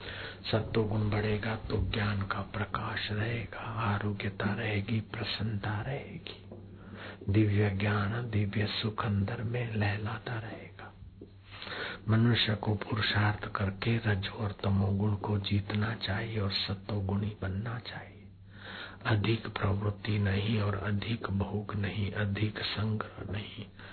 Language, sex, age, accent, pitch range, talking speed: Hindi, male, 60-79, native, 100-110 Hz, 100 wpm